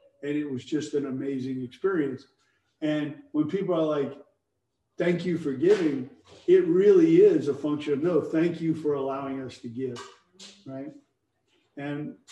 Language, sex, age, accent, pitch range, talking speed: English, male, 50-69, American, 140-180 Hz, 155 wpm